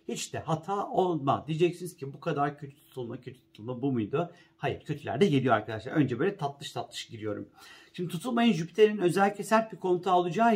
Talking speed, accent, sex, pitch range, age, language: 180 wpm, native, male, 135-185 Hz, 50-69, Turkish